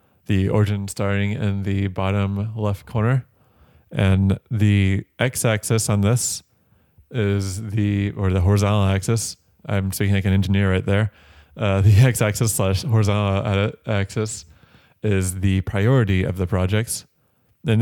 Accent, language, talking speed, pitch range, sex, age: American, English, 130 wpm, 95-110 Hz, male, 20-39